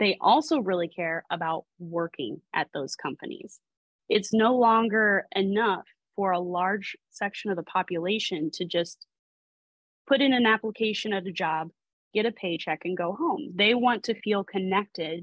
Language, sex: English, female